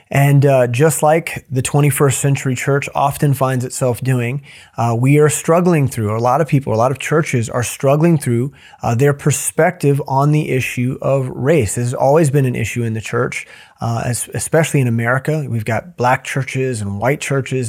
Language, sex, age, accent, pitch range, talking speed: English, male, 30-49, American, 120-140 Hz, 190 wpm